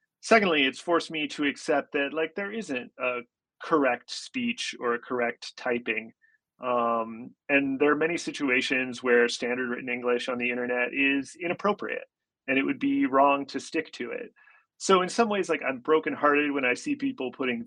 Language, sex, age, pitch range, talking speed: English, male, 30-49, 120-145 Hz, 180 wpm